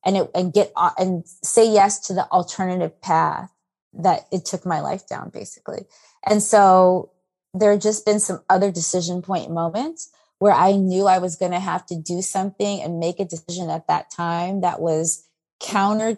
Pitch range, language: 170-200 Hz, English